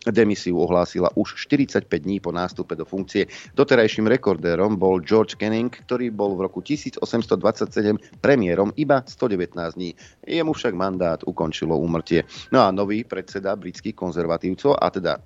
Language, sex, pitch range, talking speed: Slovak, male, 90-115 Hz, 140 wpm